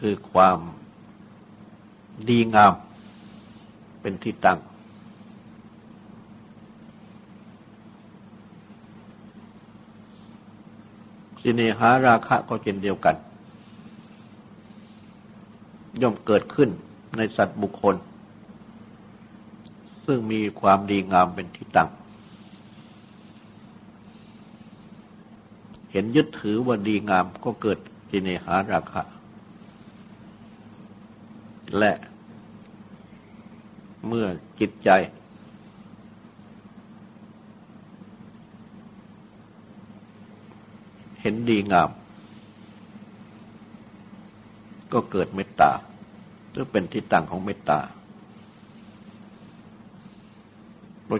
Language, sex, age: Thai, male, 60-79